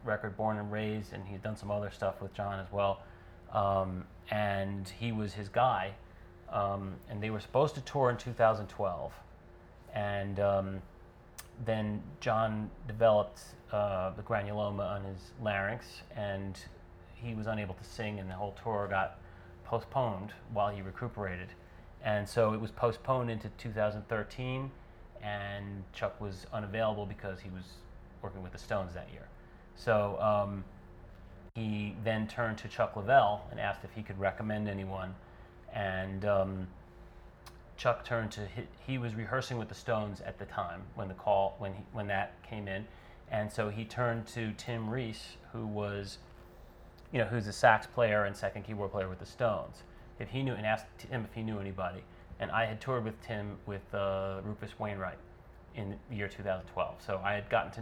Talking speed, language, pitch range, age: 170 wpm, English, 95-110 Hz, 30-49